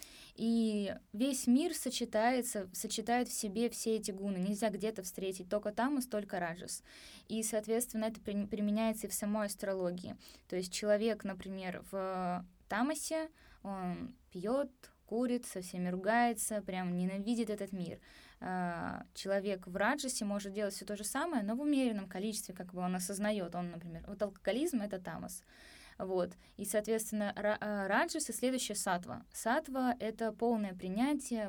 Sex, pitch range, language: female, 190-225 Hz, Russian